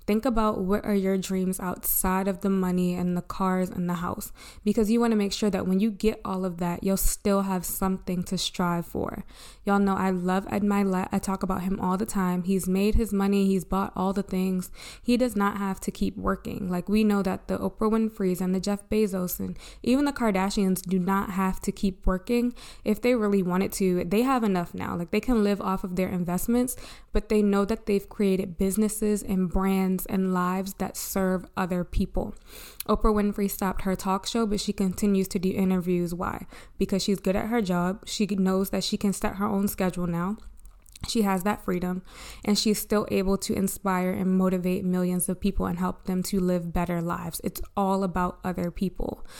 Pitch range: 185-205 Hz